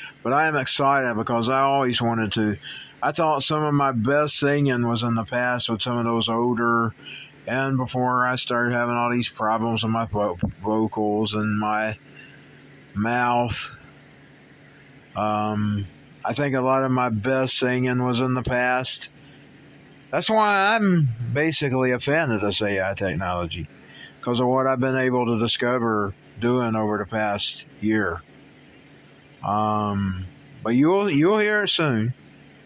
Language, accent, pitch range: English, American, 110-140 Hz